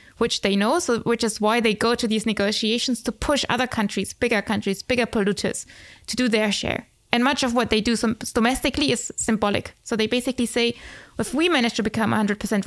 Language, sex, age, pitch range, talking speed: English, female, 20-39, 210-250 Hz, 210 wpm